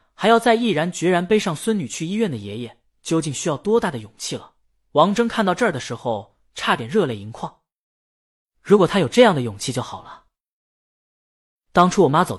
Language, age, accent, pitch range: Chinese, 20-39, native, 120-185 Hz